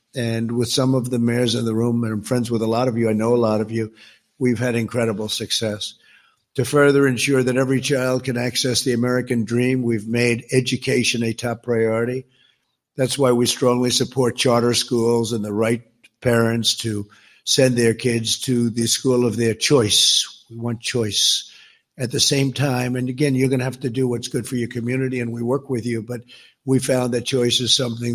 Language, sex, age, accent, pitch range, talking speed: English, male, 50-69, American, 115-130 Hz, 205 wpm